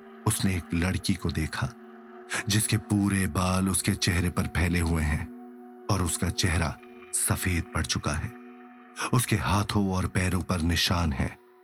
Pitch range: 90-115 Hz